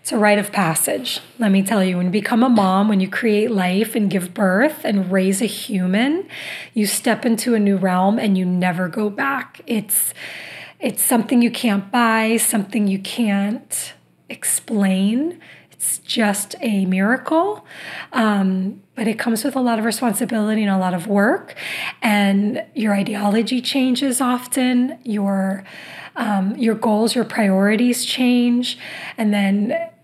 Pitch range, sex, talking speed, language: 200-245 Hz, female, 155 wpm, English